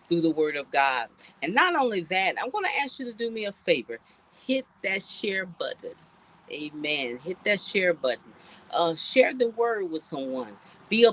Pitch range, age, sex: 160-220 Hz, 40-59, female